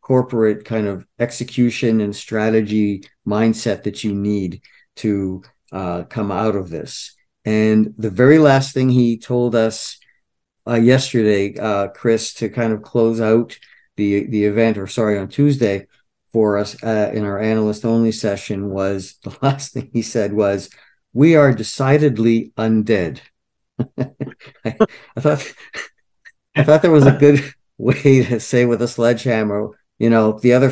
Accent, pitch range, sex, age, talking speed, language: American, 110-130 Hz, male, 50-69, 150 wpm, English